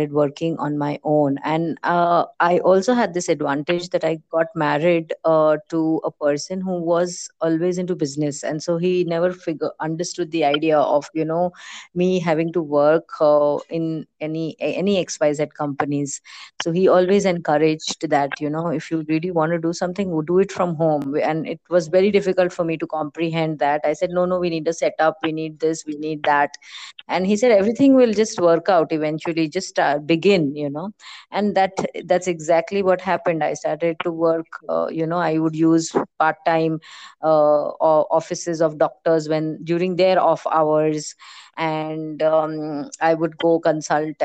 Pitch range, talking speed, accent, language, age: 155-175 Hz, 185 wpm, Indian, English, 30-49